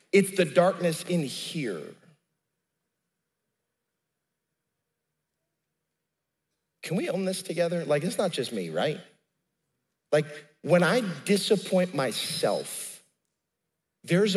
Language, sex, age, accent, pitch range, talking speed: English, male, 40-59, American, 145-185 Hz, 90 wpm